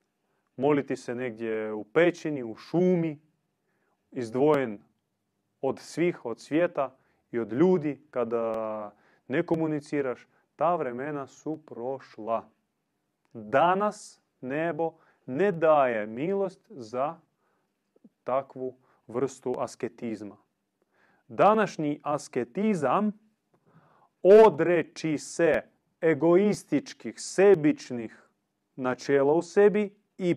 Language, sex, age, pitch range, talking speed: Croatian, male, 30-49, 125-180 Hz, 80 wpm